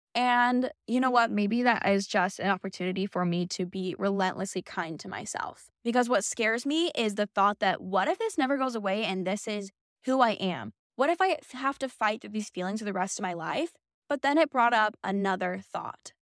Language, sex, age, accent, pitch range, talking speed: English, female, 10-29, American, 200-265 Hz, 220 wpm